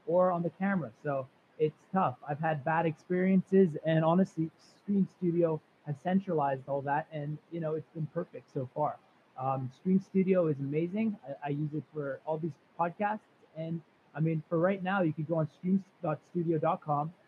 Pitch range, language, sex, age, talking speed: 145-180 Hz, English, male, 20-39, 175 wpm